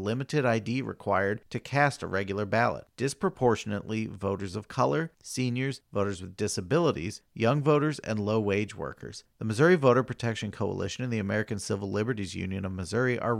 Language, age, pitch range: English, 40-59, 100-125 Hz